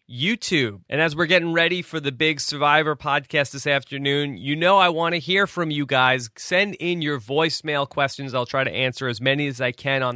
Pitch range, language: 125-160 Hz, English